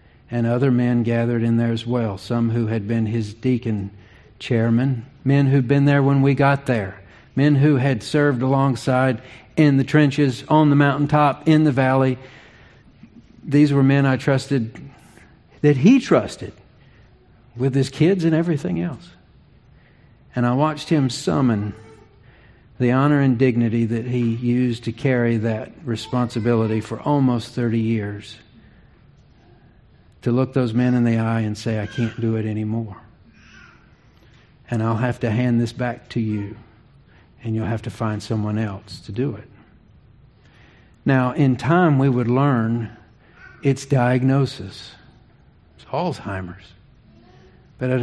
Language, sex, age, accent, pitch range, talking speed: English, male, 50-69, American, 115-140 Hz, 145 wpm